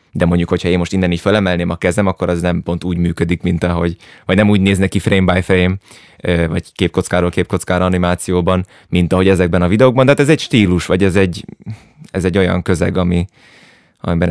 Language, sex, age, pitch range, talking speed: Hungarian, male, 20-39, 90-105 Hz, 205 wpm